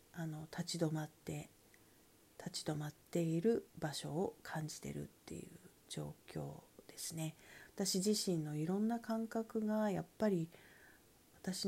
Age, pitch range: 40-59, 150-195 Hz